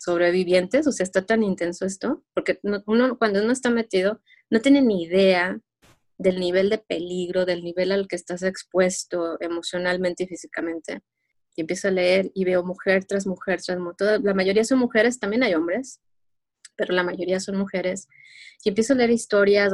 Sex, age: female, 20-39